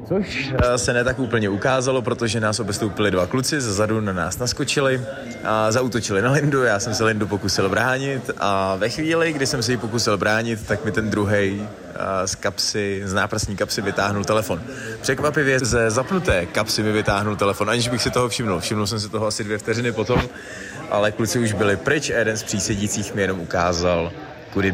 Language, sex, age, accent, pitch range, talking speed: Czech, male, 20-39, native, 105-130 Hz, 185 wpm